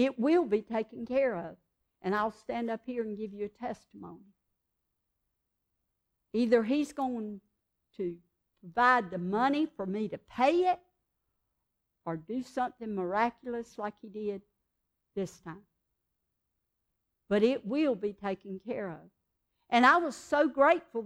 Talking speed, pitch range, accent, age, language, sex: 140 wpm, 210-290 Hz, American, 60-79, English, female